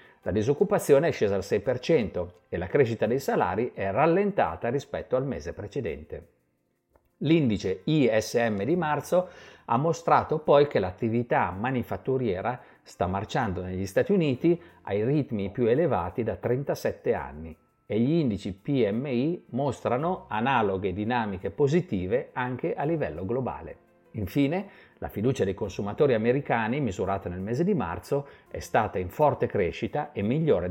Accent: native